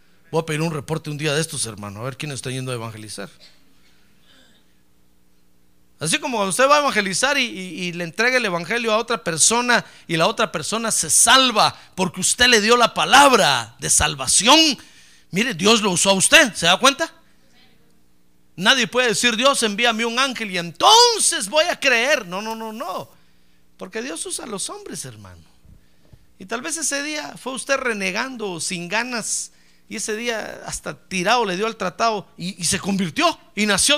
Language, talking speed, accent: Spanish, 185 wpm, Mexican